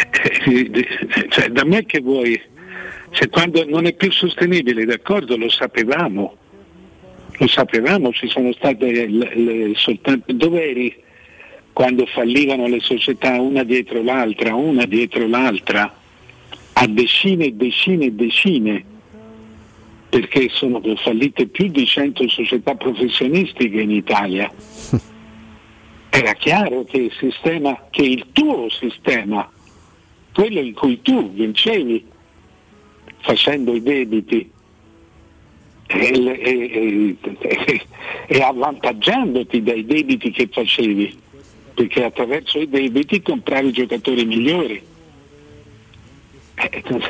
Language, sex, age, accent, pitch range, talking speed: Italian, male, 60-79, native, 110-140 Hz, 105 wpm